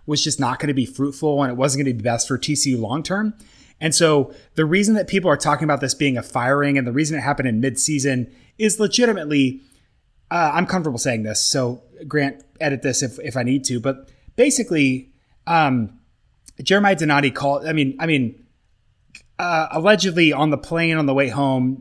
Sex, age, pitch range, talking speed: male, 30-49, 130-150 Hz, 200 wpm